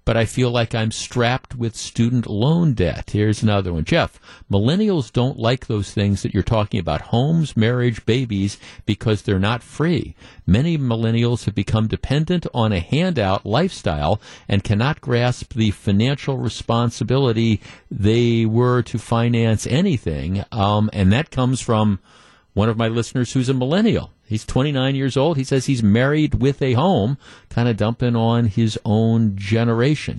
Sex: male